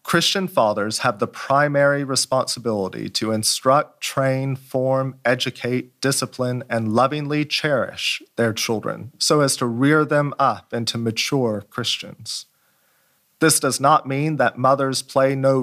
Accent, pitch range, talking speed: American, 115-140 Hz, 130 wpm